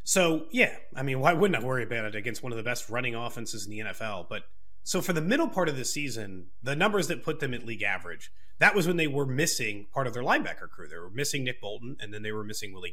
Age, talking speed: 30-49, 275 wpm